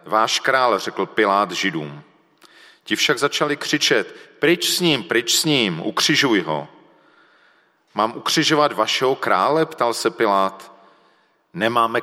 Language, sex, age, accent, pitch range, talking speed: Czech, male, 40-59, native, 100-140 Hz, 125 wpm